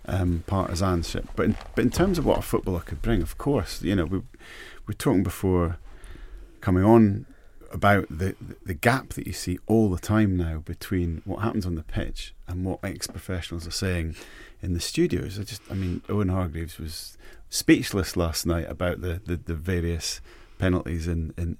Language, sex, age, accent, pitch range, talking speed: English, male, 30-49, British, 85-95 Hz, 190 wpm